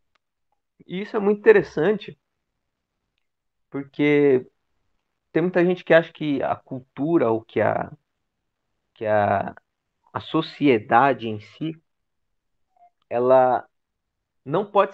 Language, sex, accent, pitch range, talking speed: Portuguese, male, Brazilian, 115-175 Hz, 95 wpm